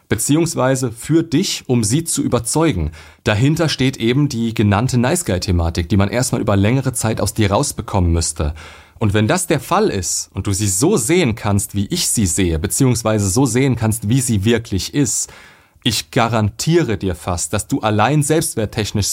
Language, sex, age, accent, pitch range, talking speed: German, male, 30-49, German, 100-130 Hz, 175 wpm